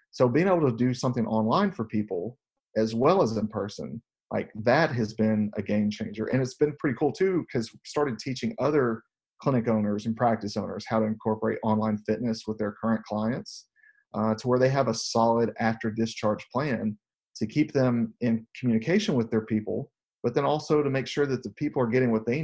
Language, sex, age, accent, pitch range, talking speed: English, male, 40-59, American, 110-125 Hz, 205 wpm